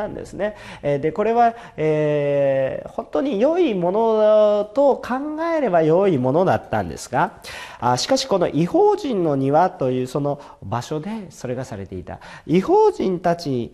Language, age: Japanese, 40-59